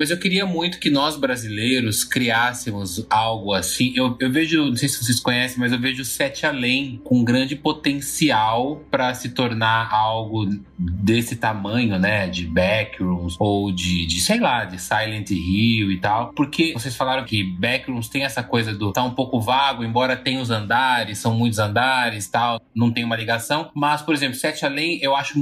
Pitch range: 110-140 Hz